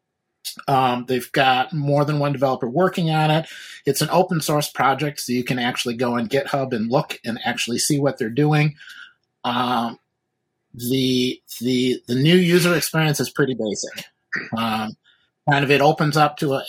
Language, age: English, 30-49